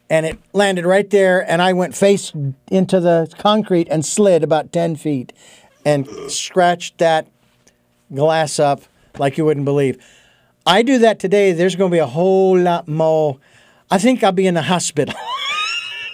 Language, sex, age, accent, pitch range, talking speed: English, male, 50-69, American, 145-200 Hz, 165 wpm